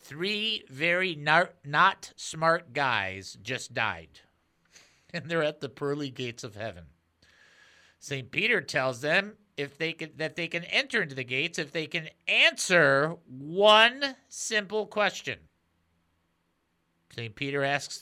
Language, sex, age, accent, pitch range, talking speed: English, male, 50-69, American, 135-200 Hz, 130 wpm